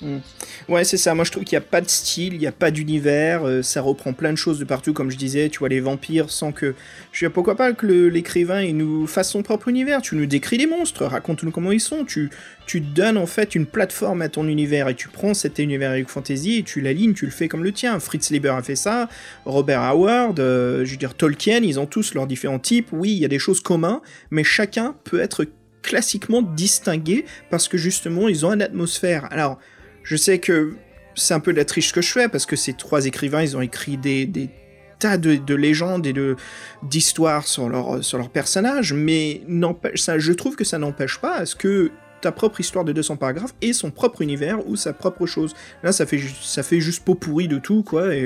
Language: French